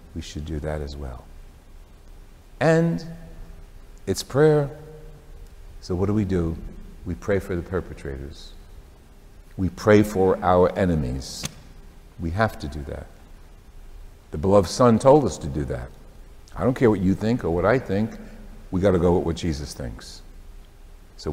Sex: male